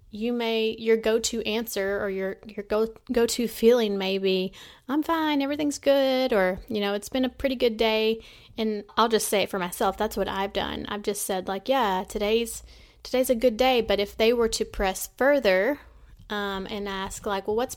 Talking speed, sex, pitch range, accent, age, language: 205 wpm, female, 190-220 Hz, American, 30-49, English